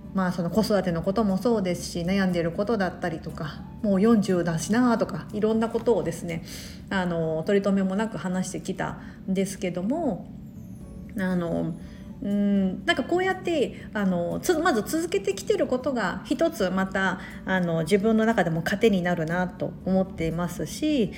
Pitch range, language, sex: 180-230 Hz, Japanese, female